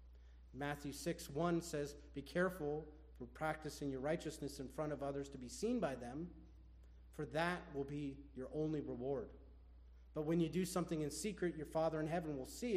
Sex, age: male, 30-49